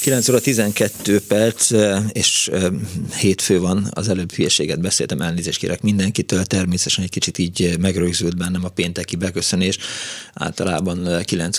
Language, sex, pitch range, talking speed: Hungarian, male, 90-105 Hz, 130 wpm